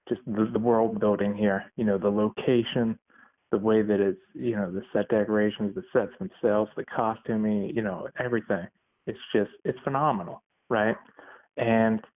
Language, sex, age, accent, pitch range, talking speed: English, male, 20-39, American, 105-125 Hz, 165 wpm